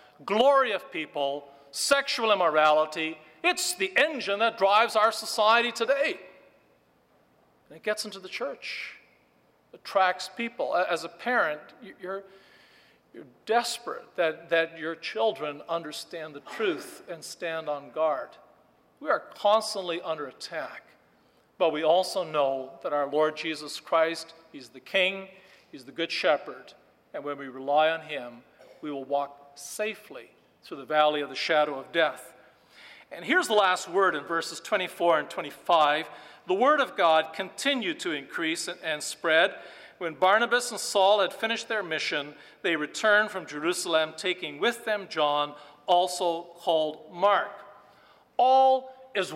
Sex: male